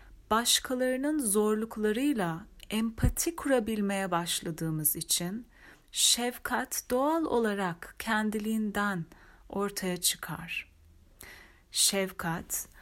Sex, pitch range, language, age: female, 180-245 Hz, Turkish, 30-49